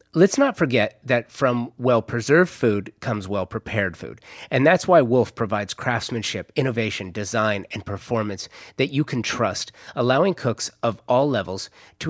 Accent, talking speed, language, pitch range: American, 150 wpm, English, 110-150 Hz